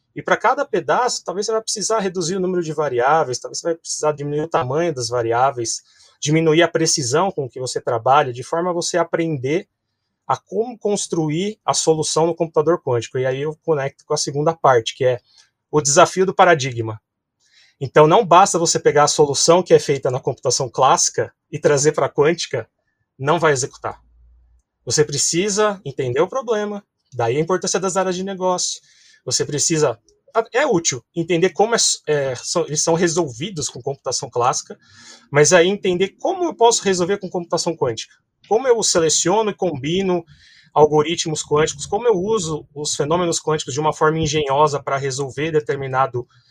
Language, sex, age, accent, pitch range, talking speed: Portuguese, male, 20-39, Brazilian, 145-185 Hz, 170 wpm